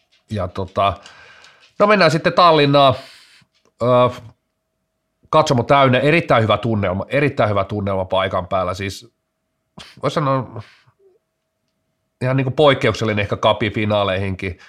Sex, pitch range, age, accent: male, 105-125 Hz, 30-49, native